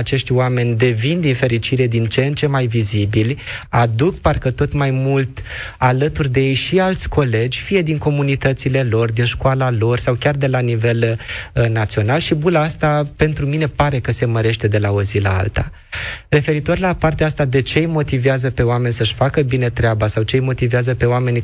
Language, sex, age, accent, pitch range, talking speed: Romanian, male, 20-39, native, 115-135 Hz, 195 wpm